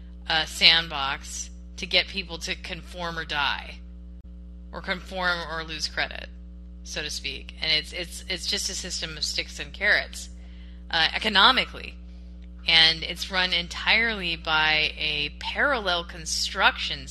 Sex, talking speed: female, 135 wpm